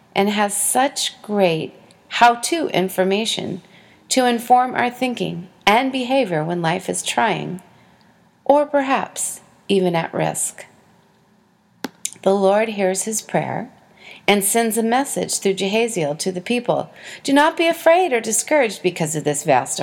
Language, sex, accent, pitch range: English, female, American, 175-220 Hz